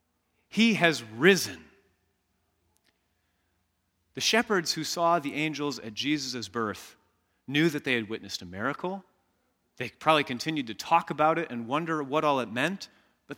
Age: 30-49